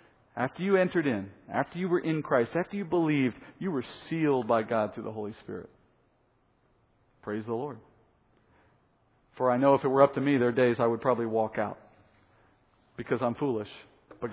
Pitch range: 115-135 Hz